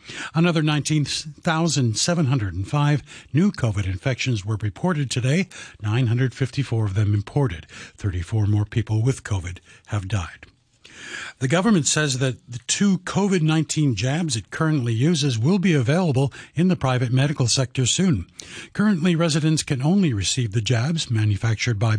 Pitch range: 115-160 Hz